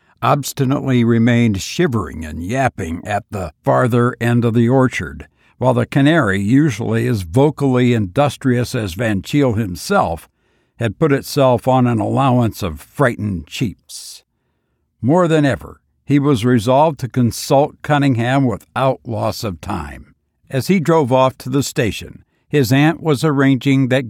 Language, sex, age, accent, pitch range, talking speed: English, male, 60-79, American, 100-135 Hz, 140 wpm